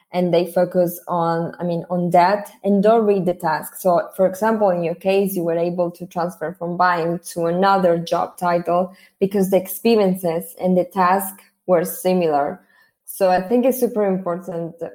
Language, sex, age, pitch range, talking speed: English, female, 20-39, 175-195 Hz, 175 wpm